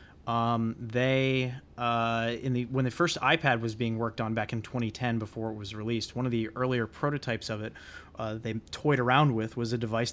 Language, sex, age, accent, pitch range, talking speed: English, male, 20-39, American, 110-125 Hz, 205 wpm